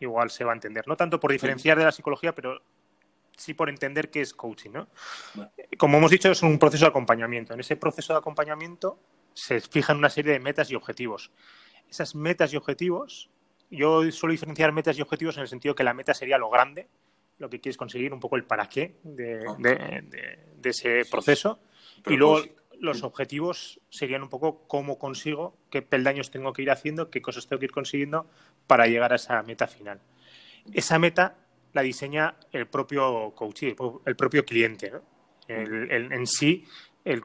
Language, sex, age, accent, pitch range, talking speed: Spanish, male, 20-39, Spanish, 125-155 Hz, 185 wpm